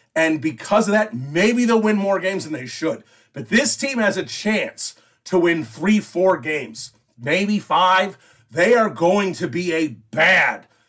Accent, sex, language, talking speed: American, male, English, 175 wpm